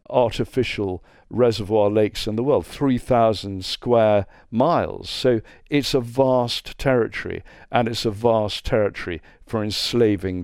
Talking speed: 120 wpm